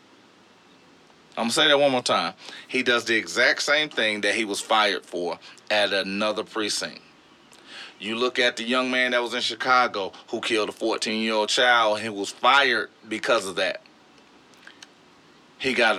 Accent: American